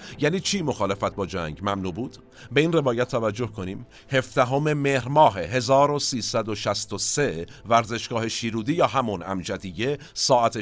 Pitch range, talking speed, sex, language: 100-135 Hz, 130 wpm, male, Persian